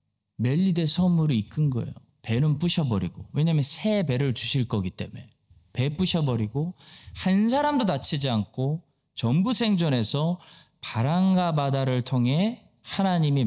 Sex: male